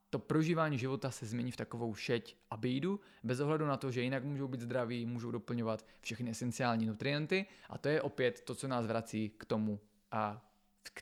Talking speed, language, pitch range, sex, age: 190 wpm, Czech, 115-140 Hz, male, 20-39